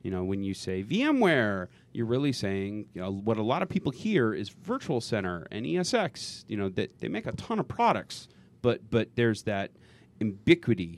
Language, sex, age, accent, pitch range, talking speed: English, male, 30-49, American, 100-145 Hz, 195 wpm